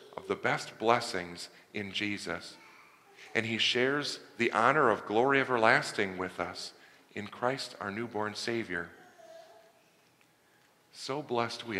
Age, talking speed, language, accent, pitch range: 40-59, 120 wpm, English, American, 95-125 Hz